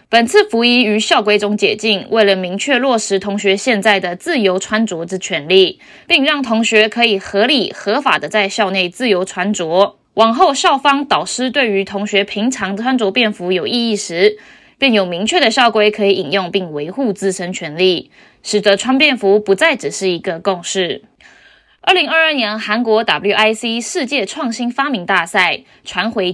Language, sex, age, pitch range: Chinese, female, 20-39, 195-255 Hz